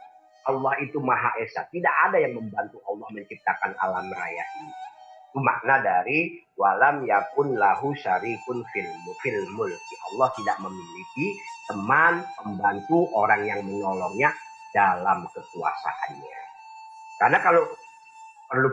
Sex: male